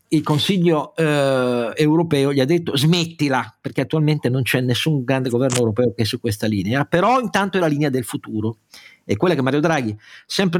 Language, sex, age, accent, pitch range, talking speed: Italian, male, 50-69, native, 115-165 Hz, 190 wpm